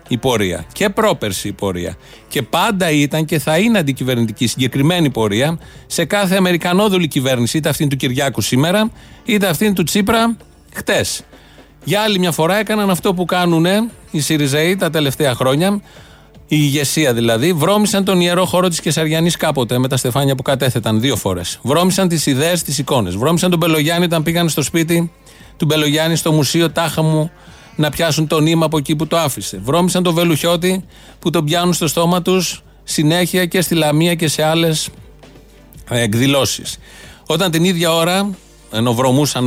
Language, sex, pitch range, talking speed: Greek, male, 140-180 Hz, 165 wpm